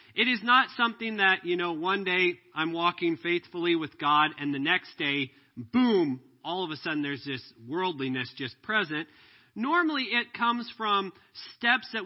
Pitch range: 150-220 Hz